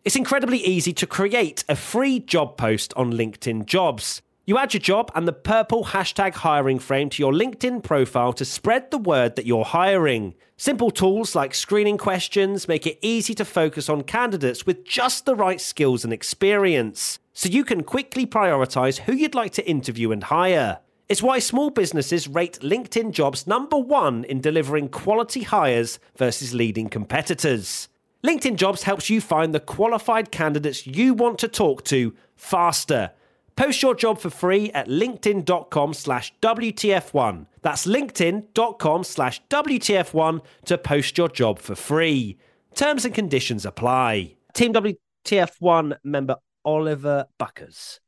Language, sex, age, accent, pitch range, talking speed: English, male, 30-49, British, 135-220 Hz, 150 wpm